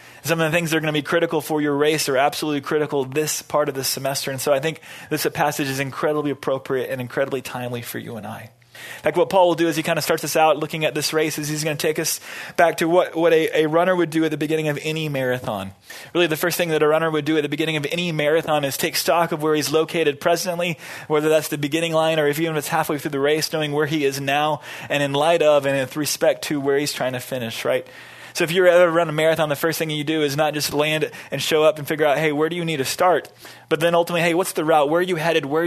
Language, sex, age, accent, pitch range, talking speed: English, male, 20-39, American, 145-165 Hz, 290 wpm